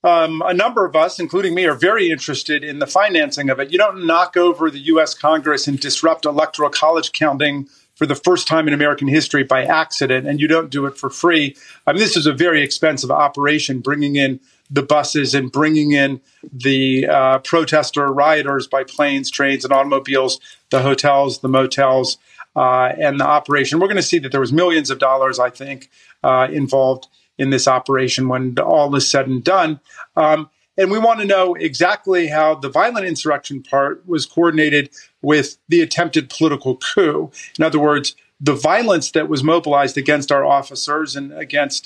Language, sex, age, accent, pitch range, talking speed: English, male, 40-59, American, 135-165 Hz, 185 wpm